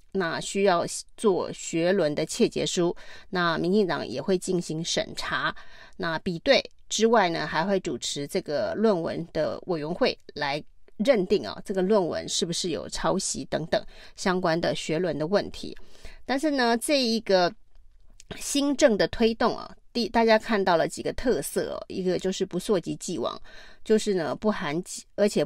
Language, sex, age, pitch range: Chinese, female, 30-49, 180-215 Hz